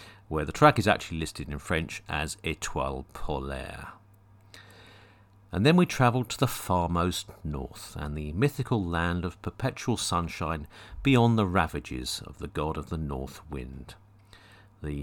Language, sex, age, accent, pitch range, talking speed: English, male, 50-69, British, 80-110 Hz, 150 wpm